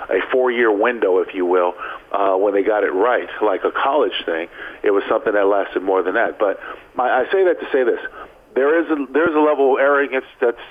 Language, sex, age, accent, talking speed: English, male, 50-69, American, 235 wpm